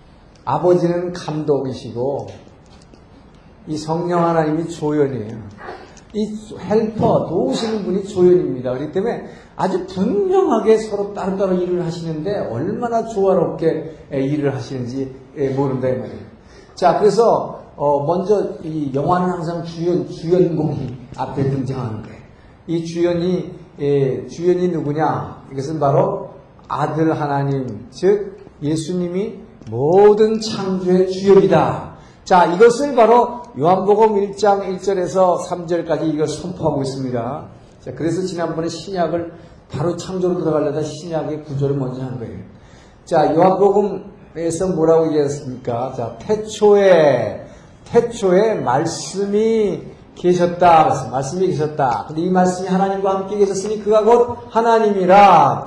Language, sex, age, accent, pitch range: Korean, male, 50-69, native, 145-195 Hz